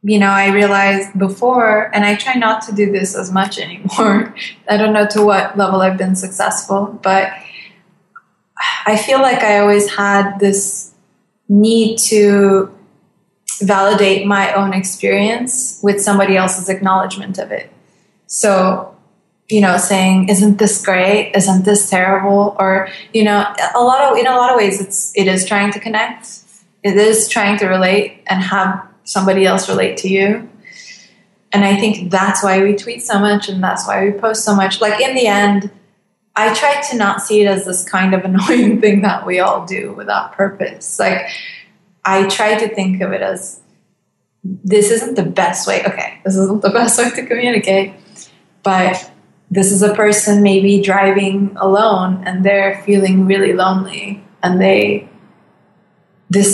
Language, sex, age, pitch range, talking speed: English, female, 20-39, 195-210 Hz, 170 wpm